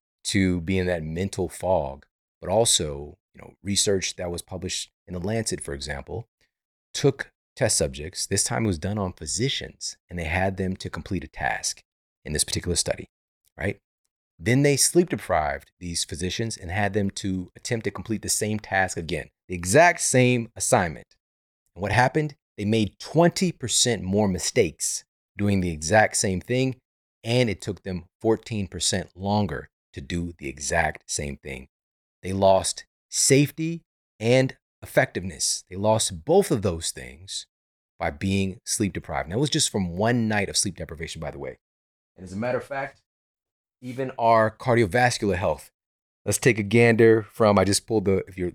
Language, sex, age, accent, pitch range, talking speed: English, male, 30-49, American, 90-115 Hz, 170 wpm